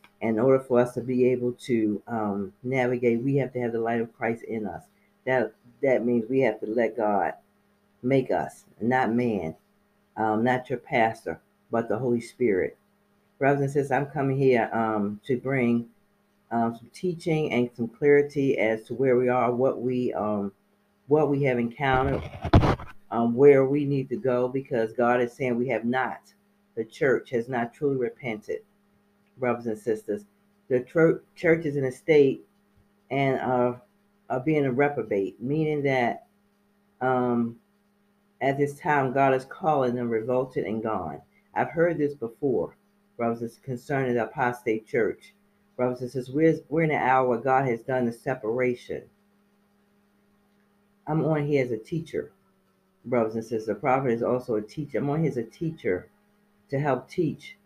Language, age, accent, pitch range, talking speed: English, 40-59, American, 120-150 Hz, 170 wpm